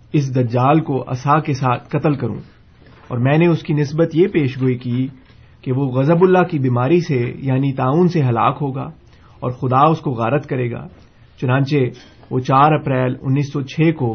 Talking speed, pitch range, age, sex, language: 185 wpm, 125-150 Hz, 30-49, male, Urdu